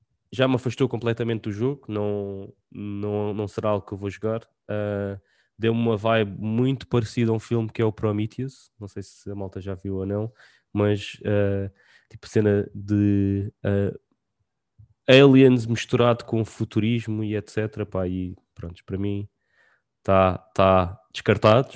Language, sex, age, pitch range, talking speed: English, male, 20-39, 100-115 Hz, 155 wpm